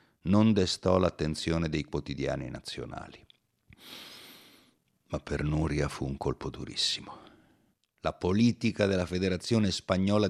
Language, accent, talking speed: Italian, native, 105 wpm